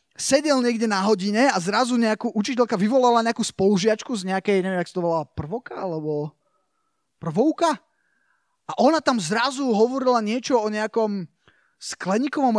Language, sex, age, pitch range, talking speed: Slovak, male, 20-39, 175-245 Hz, 135 wpm